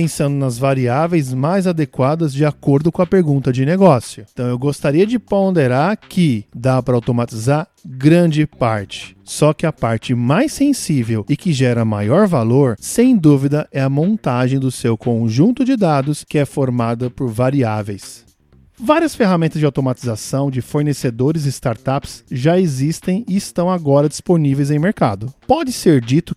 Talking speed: 155 wpm